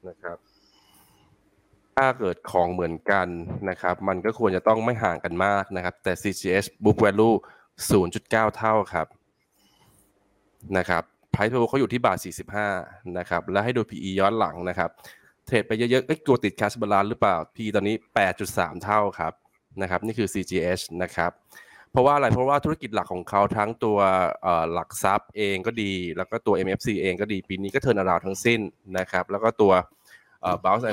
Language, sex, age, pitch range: Thai, male, 20-39, 90-110 Hz